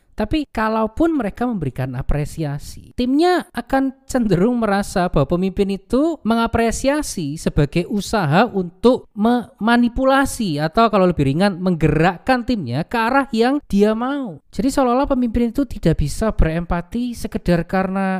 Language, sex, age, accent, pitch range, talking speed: Indonesian, male, 20-39, native, 145-225 Hz, 120 wpm